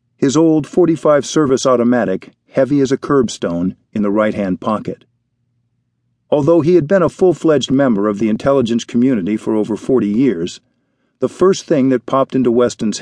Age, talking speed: 50-69, 165 wpm